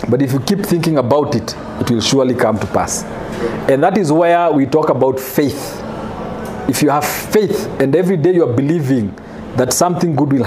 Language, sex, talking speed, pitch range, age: English, male, 200 wpm, 135-185 Hz, 40-59